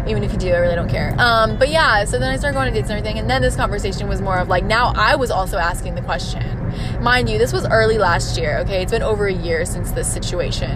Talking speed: 285 wpm